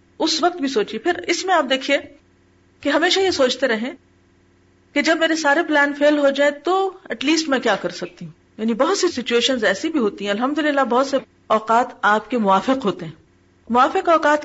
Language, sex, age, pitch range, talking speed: Urdu, female, 40-59, 205-290 Hz, 205 wpm